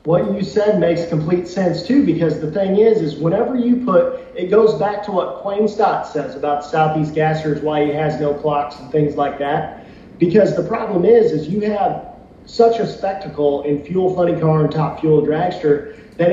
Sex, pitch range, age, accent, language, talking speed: male, 150-205 Hz, 40-59, American, English, 195 wpm